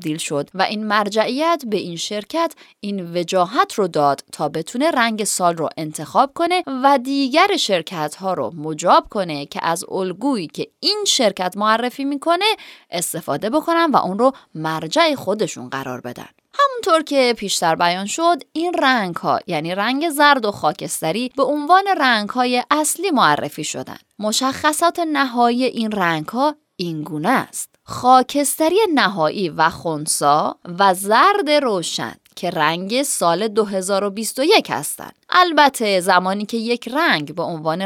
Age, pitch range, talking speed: 20-39, 175-290 Hz, 140 wpm